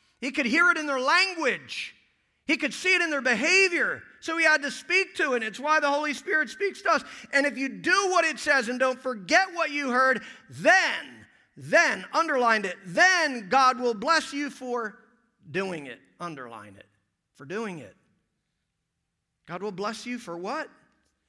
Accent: American